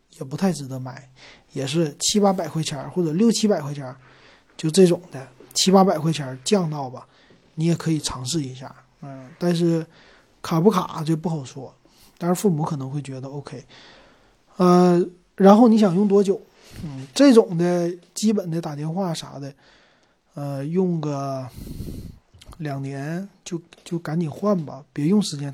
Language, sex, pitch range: Chinese, male, 140-185 Hz